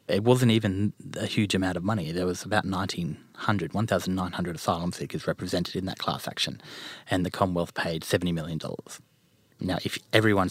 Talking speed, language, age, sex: 165 wpm, English, 30-49, male